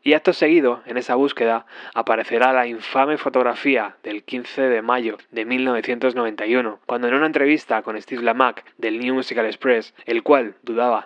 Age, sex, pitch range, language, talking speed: 20-39, male, 115-135 Hz, Spanish, 165 wpm